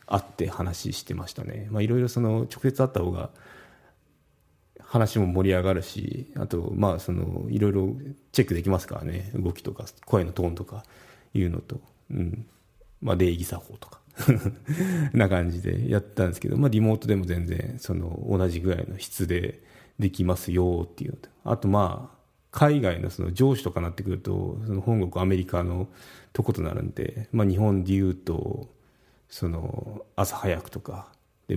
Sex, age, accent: male, 30-49, native